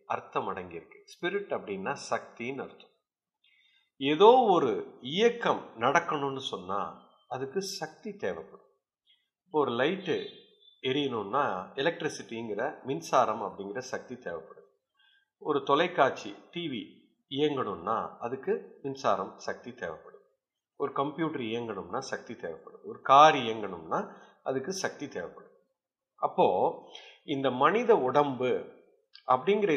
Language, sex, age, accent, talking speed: Tamil, male, 50-69, native, 95 wpm